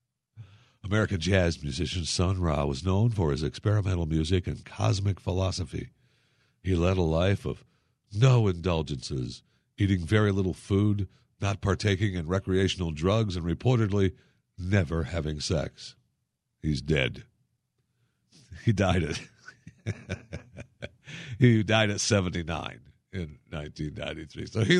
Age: 60-79